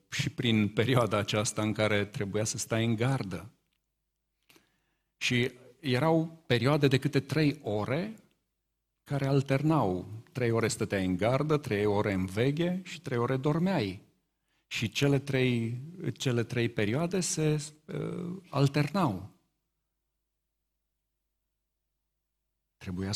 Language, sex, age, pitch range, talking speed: Romanian, male, 50-69, 115-155 Hz, 110 wpm